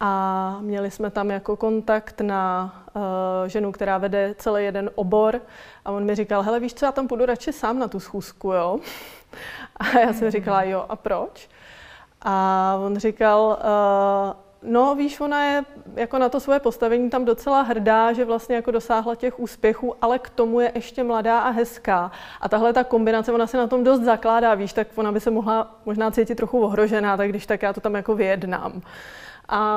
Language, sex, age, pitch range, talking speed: Czech, female, 20-39, 205-235 Hz, 195 wpm